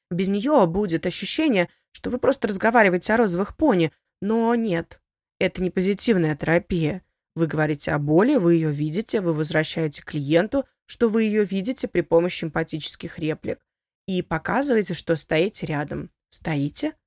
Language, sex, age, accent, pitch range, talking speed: Russian, female, 20-39, native, 155-215 Hz, 145 wpm